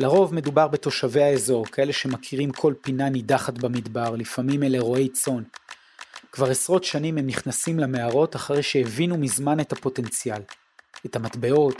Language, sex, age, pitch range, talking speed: Hebrew, male, 30-49, 130-165 Hz, 135 wpm